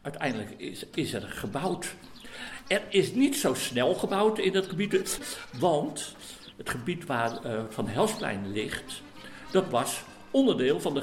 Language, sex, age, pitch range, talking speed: Dutch, male, 60-79, 125-195 Hz, 145 wpm